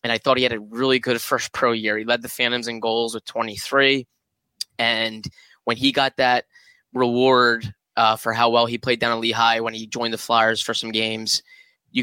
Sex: male